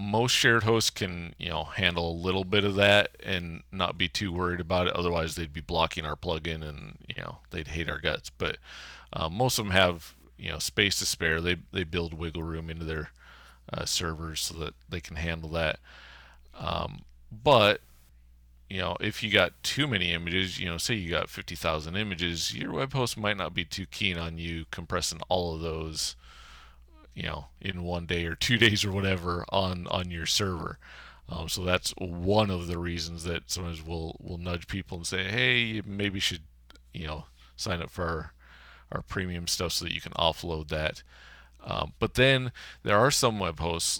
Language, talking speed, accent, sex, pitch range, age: English, 200 wpm, American, male, 80-95 Hz, 30-49